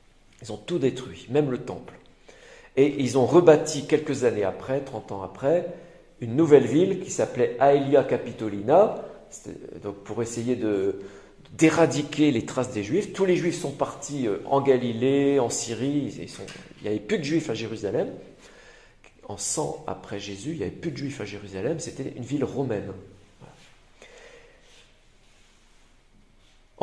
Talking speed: 155 wpm